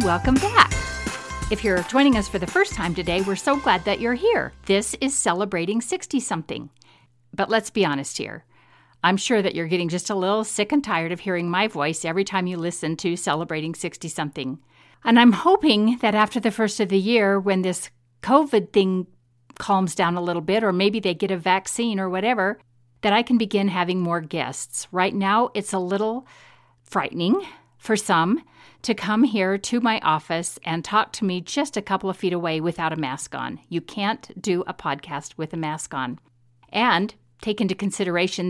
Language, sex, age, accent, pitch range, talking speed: English, female, 50-69, American, 165-215 Hz, 190 wpm